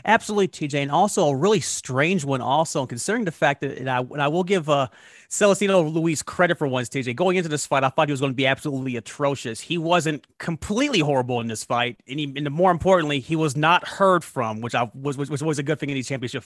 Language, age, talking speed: English, 30-49, 235 wpm